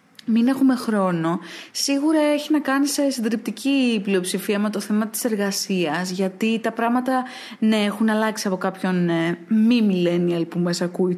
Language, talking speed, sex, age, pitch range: English, 150 wpm, female, 20-39, 200-260 Hz